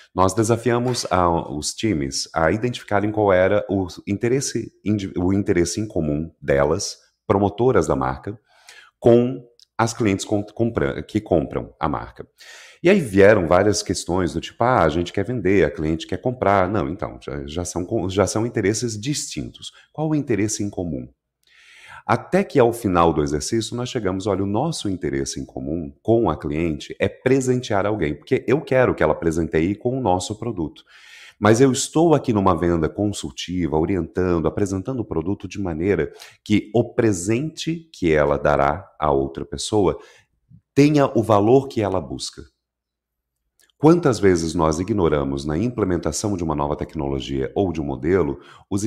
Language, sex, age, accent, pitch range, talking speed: Portuguese, male, 30-49, Brazilian, 80-115 Hz, 155 wpm